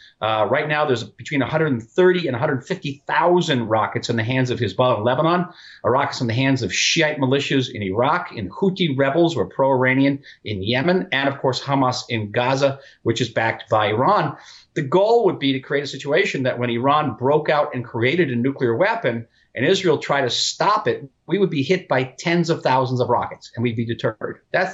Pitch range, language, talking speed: 125-155 Hz, English, 200 wpm